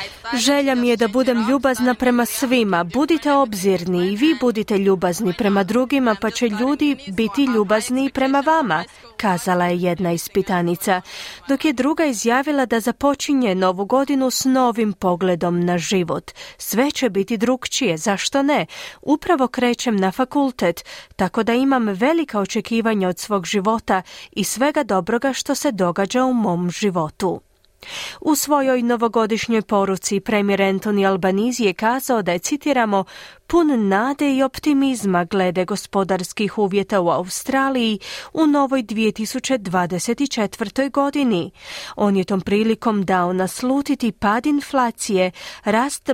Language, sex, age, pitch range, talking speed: Croatian, female, 30-49, 195-265 Hz, 135 wpm